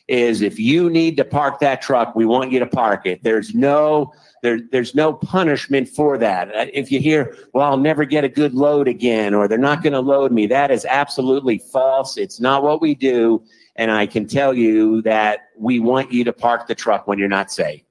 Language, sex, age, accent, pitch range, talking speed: English, male, 50-69, American, 120-145 Hz, 220 wpm